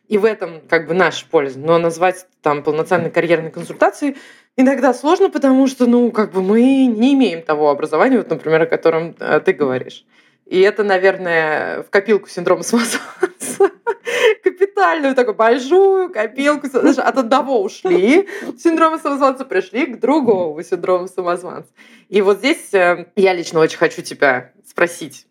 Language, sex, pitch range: Russian, female, 165-270 Hz